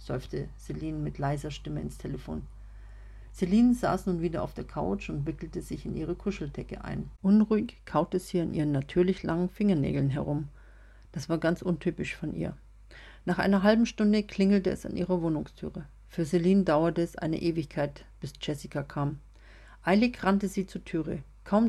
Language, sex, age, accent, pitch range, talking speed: German, female, 50-69, German, 150-190 Hz, 165 wpm